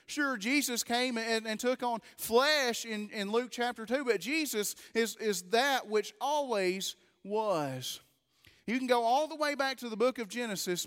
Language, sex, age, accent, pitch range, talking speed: English, male, 30-49, American, 205-245 Hz, 180 wpm